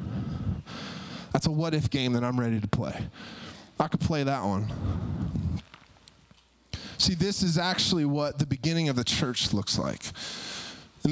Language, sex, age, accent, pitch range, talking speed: English, male, 20-39, American, 145-175 Hz, 145 wpm